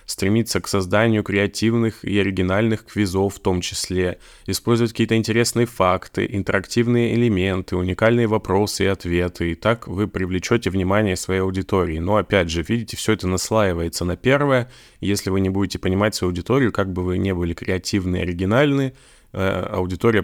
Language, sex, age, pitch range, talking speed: Russian, male, 20-39, 95-110 Hz, 155 wpm